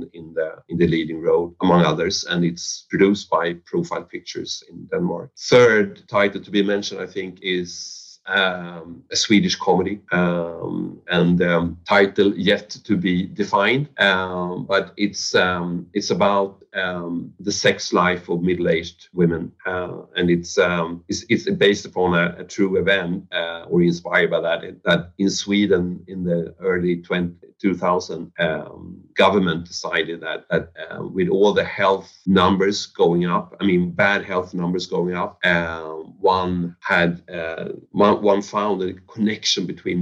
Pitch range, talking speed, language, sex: 85-95 Hz, 155 wpm, English, male